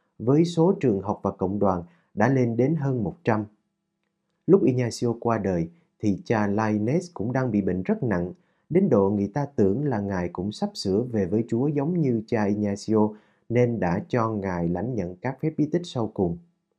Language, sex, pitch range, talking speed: Vietnamese, male, 105-165 Hz, 195 wpm